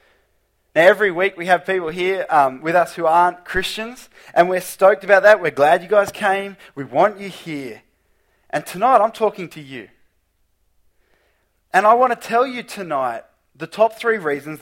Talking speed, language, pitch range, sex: 180 wpm, English, 140-200 Hz, male